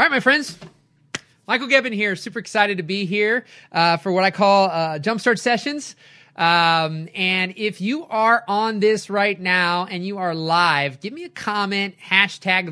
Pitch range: 165-230 Hz